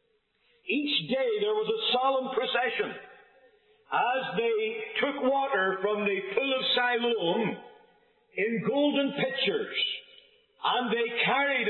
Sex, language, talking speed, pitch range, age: male, English, 115 wpm, 230-305 Hz, 50-69